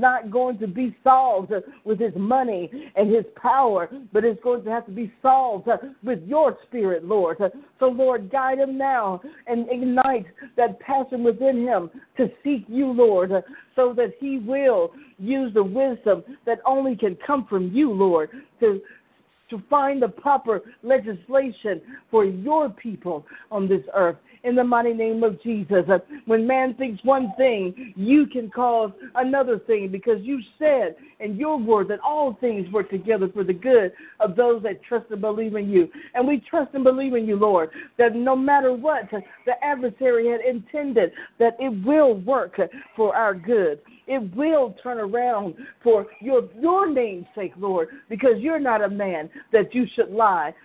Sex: female